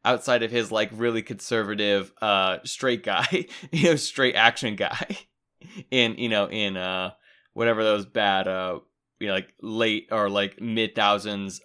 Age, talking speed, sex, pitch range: 20-39, 155 wpm, male, 105-145 Hz